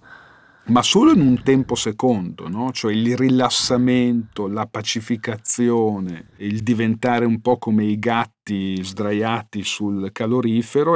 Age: 50-69